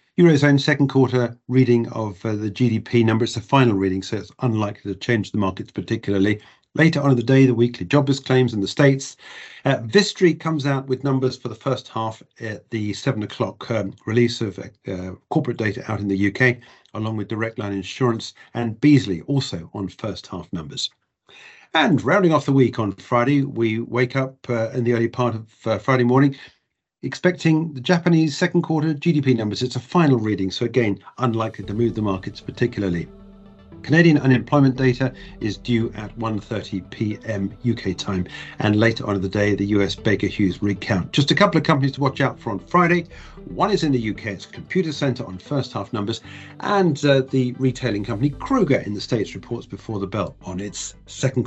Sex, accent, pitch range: male, British, 105-140 Hz